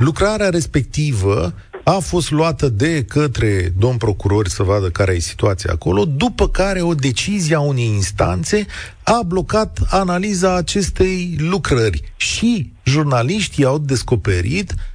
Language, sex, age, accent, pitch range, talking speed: Romanian, male, 40-59, native, 100-160 Hz, 125 wpm